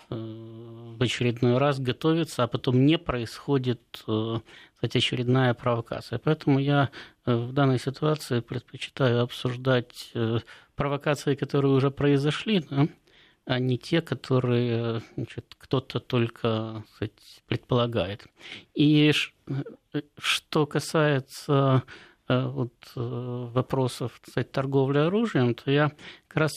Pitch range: 120-140 Hz